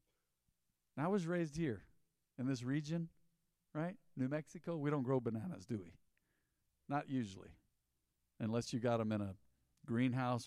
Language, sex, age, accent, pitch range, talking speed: English, male, 50-69, American, 115-180 Hz, 145 wpm